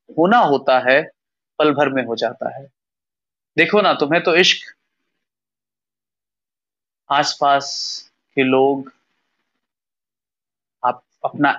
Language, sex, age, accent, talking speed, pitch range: Hindi, male, 30-49, native, 100 wpm, 125-165 Hz